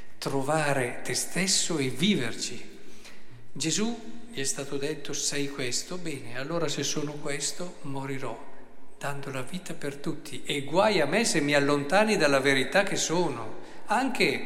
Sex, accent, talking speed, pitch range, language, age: male, native, 145 wpm, 130-170 Hz, Italian, 50-69